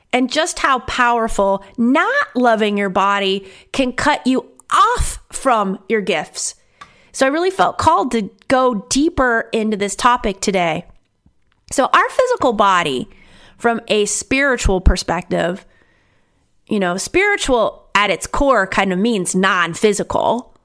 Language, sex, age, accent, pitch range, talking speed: English, female, 30-49, American, 195-265 Hz, 130 wpm